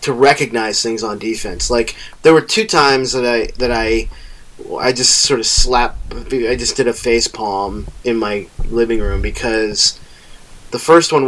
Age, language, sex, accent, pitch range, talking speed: 20-39, English, male, American, 115-150 Hz, 175 wpm